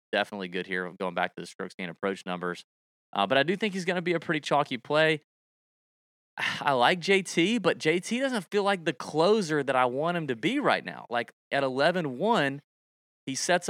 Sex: male